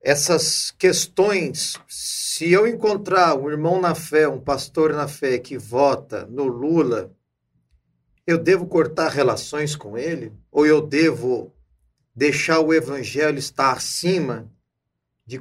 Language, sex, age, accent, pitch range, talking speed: Portuguese, male, 40-59, Brazilian, 120-165 Hz, 125 wpm